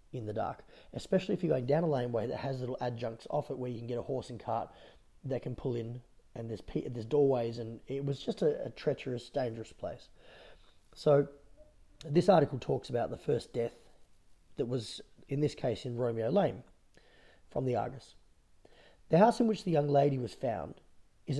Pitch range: 120-160 Hz